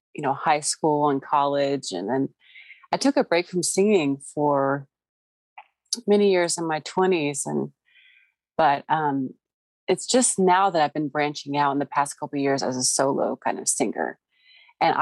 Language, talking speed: English, 175 wpm